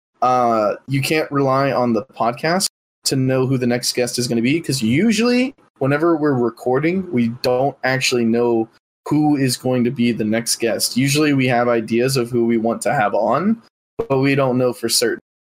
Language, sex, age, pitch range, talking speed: English, male, 20-39, 115-145 Hz, 200 wpm